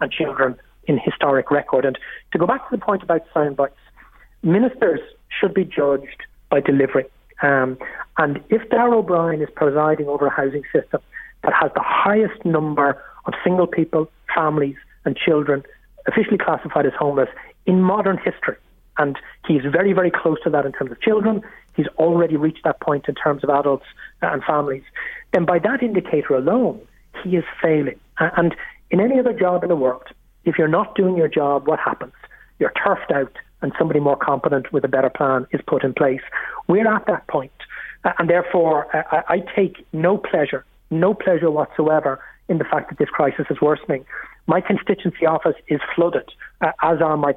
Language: English